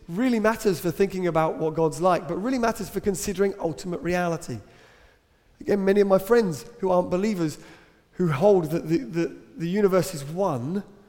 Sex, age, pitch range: male, 30-49, 140-195 Hz